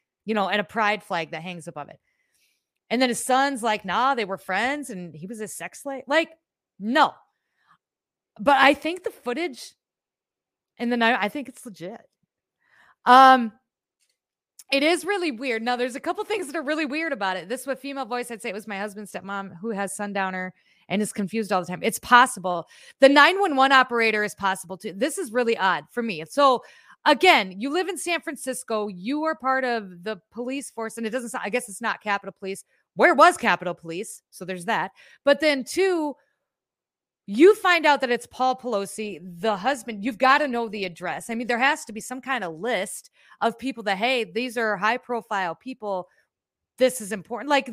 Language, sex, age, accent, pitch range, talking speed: English, female, 30-49, American, 200-275 Hz, 200 wpm